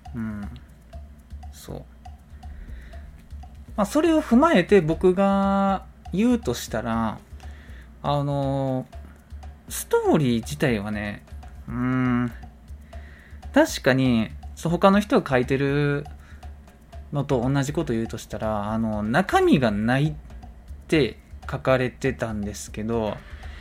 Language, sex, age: Japanese, male, 20-39